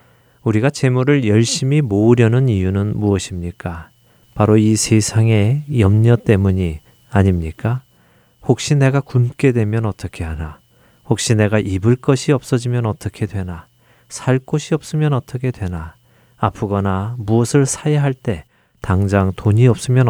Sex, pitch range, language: male, 100-130 Hz, Korean